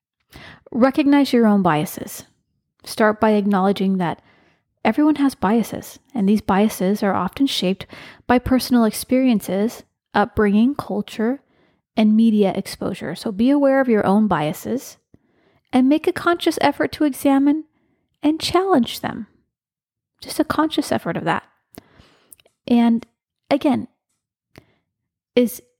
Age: 30-49